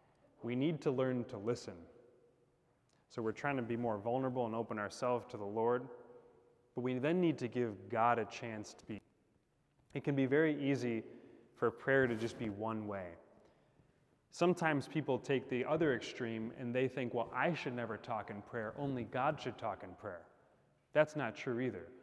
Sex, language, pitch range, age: male, English, 115-135 Hz, 30-49